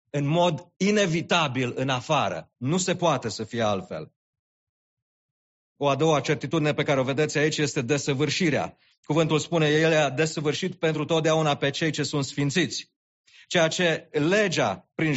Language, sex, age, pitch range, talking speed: English, male, 40-59, 130-165 Hz, 150 wpm